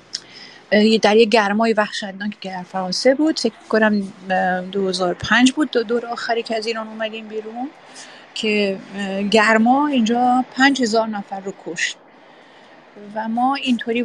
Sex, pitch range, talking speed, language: female, 205-255 Hz, 135 wpm, Persian